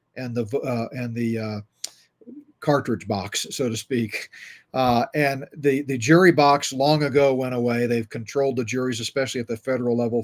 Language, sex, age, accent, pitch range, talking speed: English, male, 40-59, American, 120-145 Hz, 175 wpm